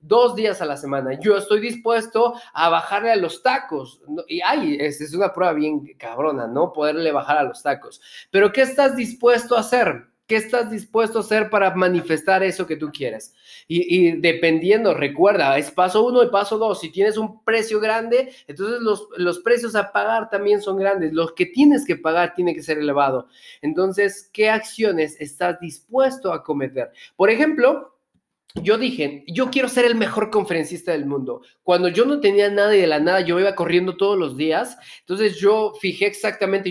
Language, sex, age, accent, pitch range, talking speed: Spanish, male, 30-49, Mexican, 175-235 Hz, 190 wpm